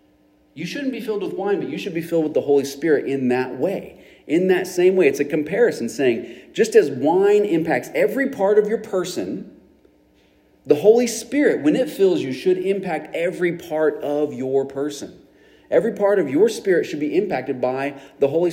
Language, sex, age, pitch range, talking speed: English, male, 40-59, 145-230 Hz, 195 wpm